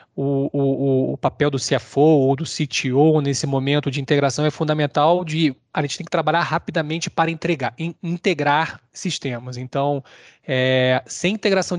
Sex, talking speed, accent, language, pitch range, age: male, 145 wpm, Brazilian, Portuguese, 145-170 Hz, 20-39